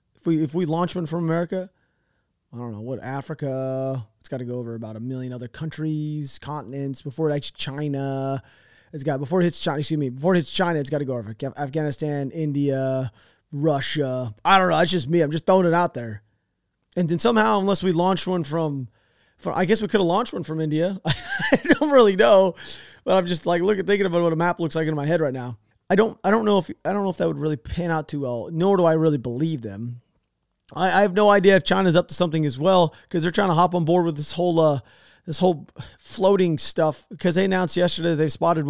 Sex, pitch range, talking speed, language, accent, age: male, 140-185 Hz, 240 wpm, English, American, 30-49